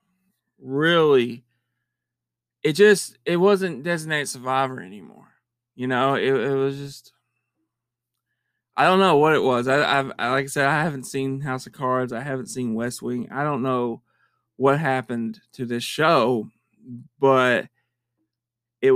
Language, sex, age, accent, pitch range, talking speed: English, male, 20-39, American, 120-155 Hz, 145 wpm